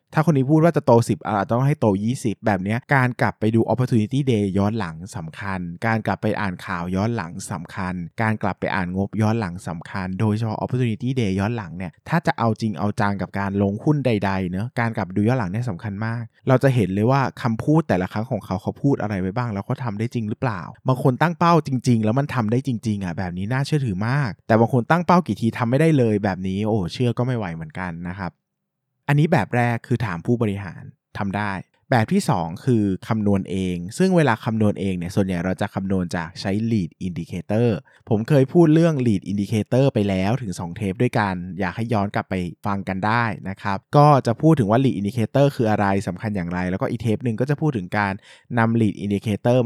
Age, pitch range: 20-39, 95-125 Hz